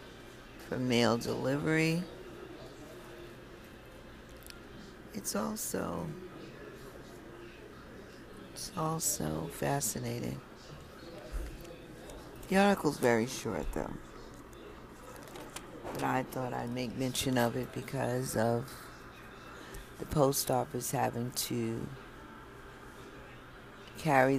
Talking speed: 70 wpm